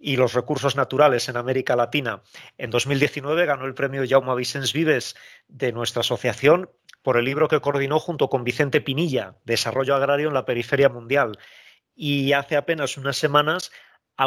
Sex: male